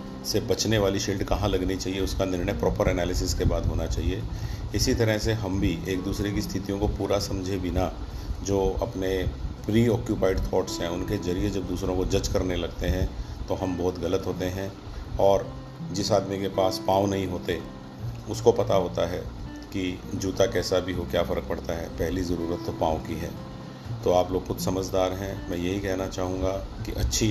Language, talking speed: Hindi, 195 wpm